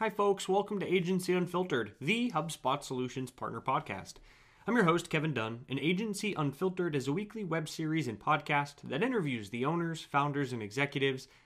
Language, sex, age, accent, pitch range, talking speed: English, male, 30-49, American, 130-180 Hz, 175 wpm